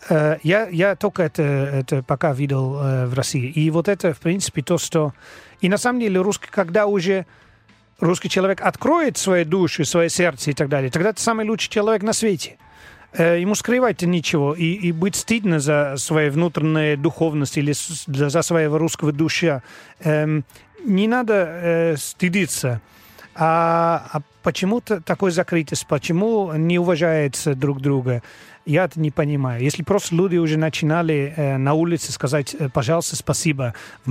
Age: 40-59